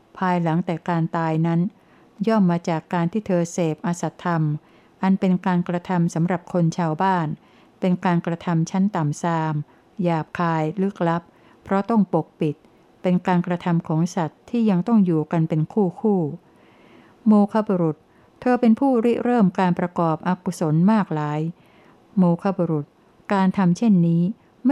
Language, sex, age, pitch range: Thai, female, 60-79, 165-200 Hz